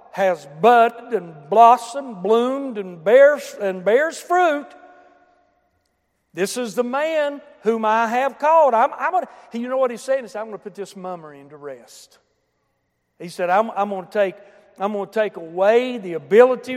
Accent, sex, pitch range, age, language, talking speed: American, male, 195-255 Hz, 60-79, English, 180 wpm